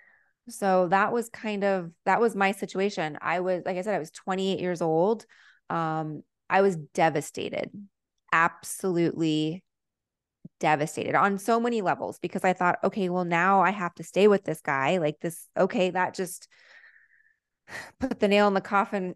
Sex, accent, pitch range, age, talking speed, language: female, American, 175-205 Hz, 20-39, 165 wpm, English